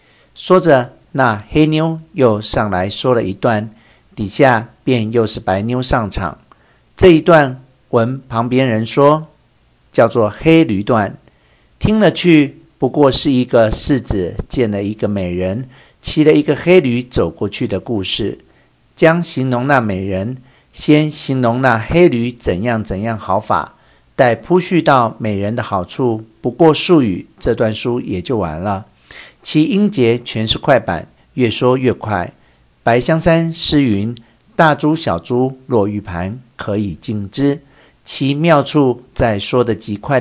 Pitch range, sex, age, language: 110-145 Hz, male, 50-69, Chinese